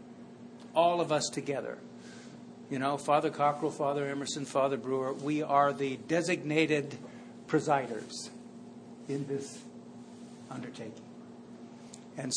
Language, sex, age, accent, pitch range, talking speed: English, male, 60-79, American, 135-160 Hz, 100 wpm